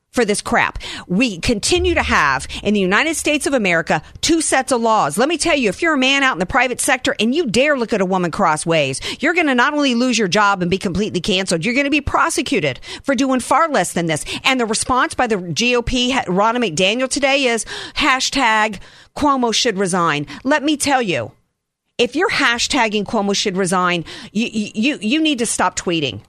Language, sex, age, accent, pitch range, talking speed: English, female, 50-69, American, 195-275 Hz, 210 wpm